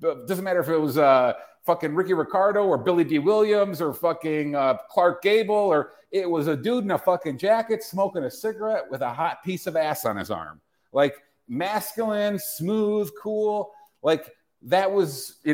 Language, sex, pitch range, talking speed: English, male, 150-205 Hz, 180 wpm